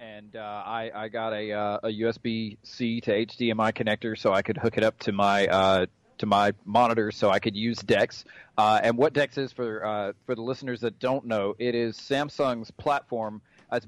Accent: American